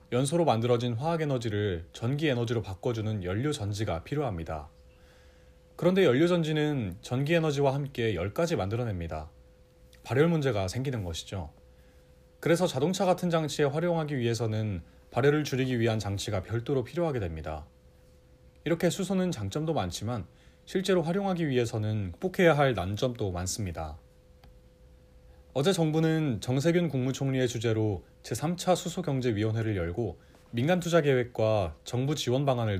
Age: 30-49